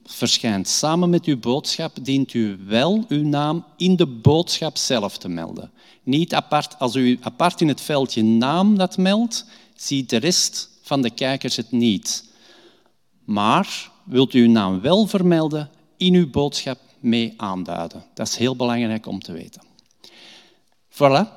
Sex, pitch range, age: male, 115-150 Hz, 50-69